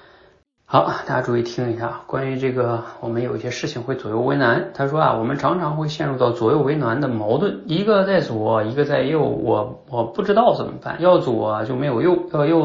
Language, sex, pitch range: Chinese, male, 115-170 Hz